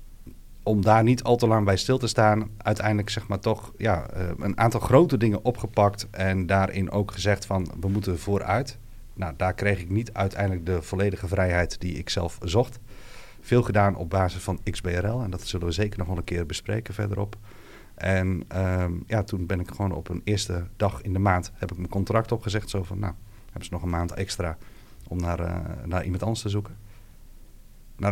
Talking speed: 200 wpm